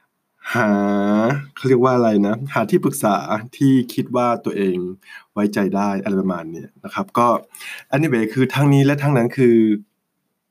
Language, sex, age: Thai, male, 20-39